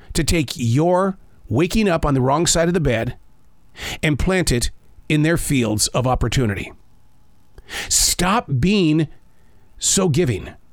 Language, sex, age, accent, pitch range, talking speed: English, male, 40-59, American, 120-190 Hz, 135 wpm